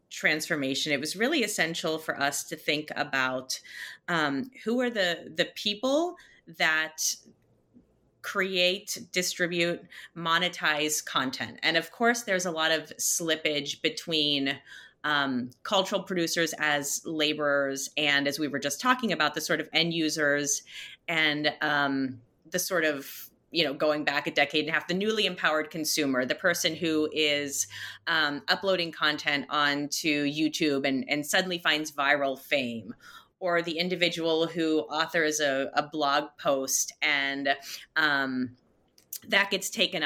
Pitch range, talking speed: 145-170 Hz, 140 wpm